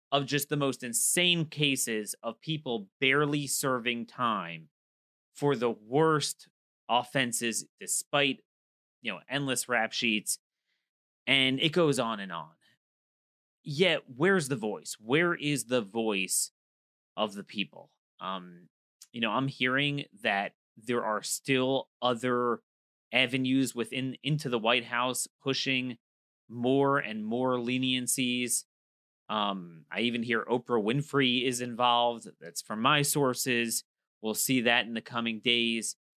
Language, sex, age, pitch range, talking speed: English, male, 30-49, 110-135 Hz, 130 wpm